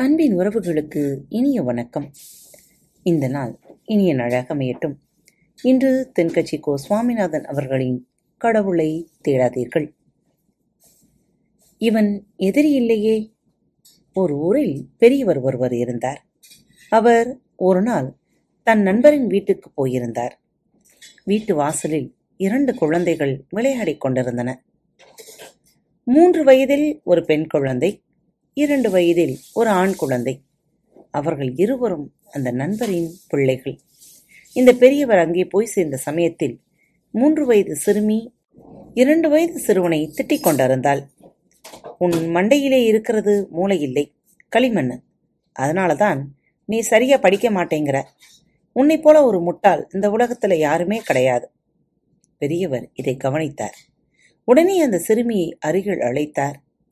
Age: 30-49